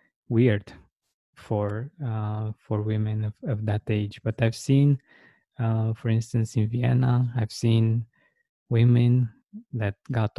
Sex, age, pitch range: male, 20-39, 110-125 Hz